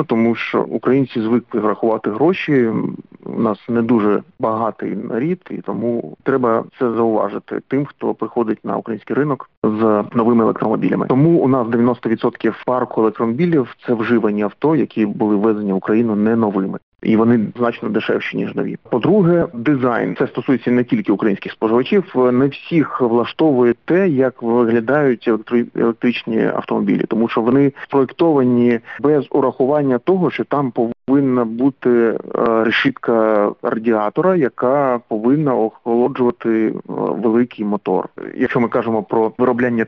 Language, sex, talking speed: Ukrainian, male, 130 wpm